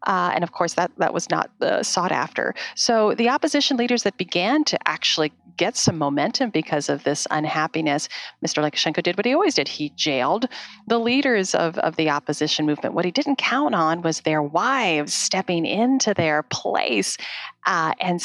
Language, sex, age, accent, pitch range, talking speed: English, female, 40-59, American, 160-215 Hz, 185 wpm